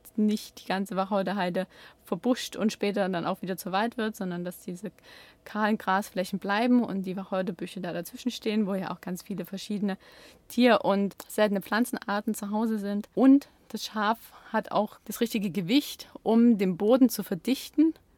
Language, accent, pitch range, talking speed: German, German, 190-225 Hz, 170 wpm